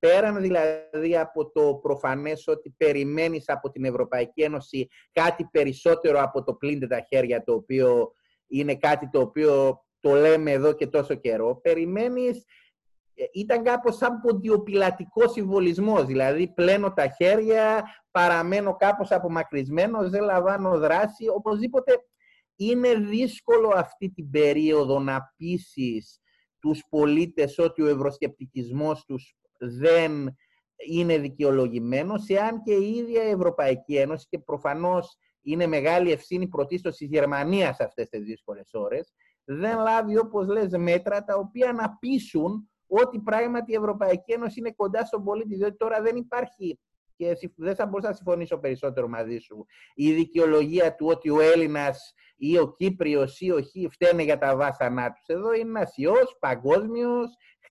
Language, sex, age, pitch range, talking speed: Greek, male, 30-49, 150-220 Hz, 140 wpm